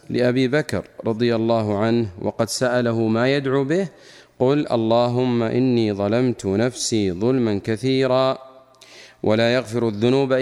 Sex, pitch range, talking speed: male, 115-135 Hz, 115 wpm